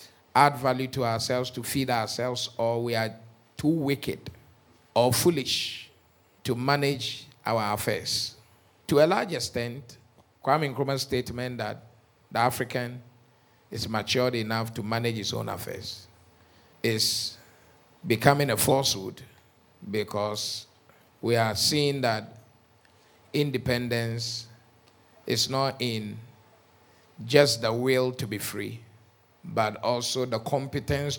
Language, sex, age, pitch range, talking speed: English, male, 50-69, 110-130 Hz, 115 wpm